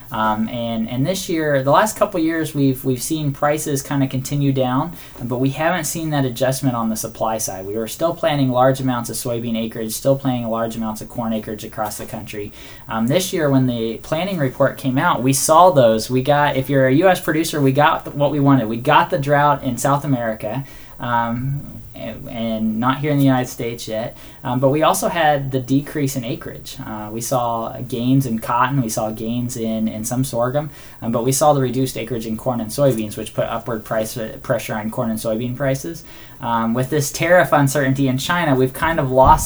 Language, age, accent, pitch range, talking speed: English, 10-29, American, 115-140 Hz, 210 wpm